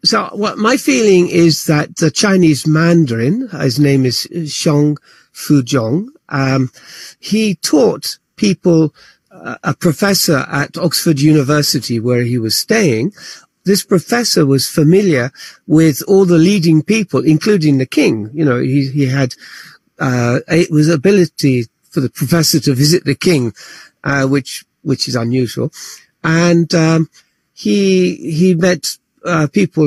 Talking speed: 135 wpm